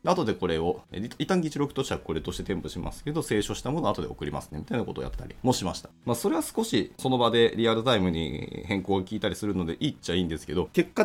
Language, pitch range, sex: Japanese, 90-135 Hz, male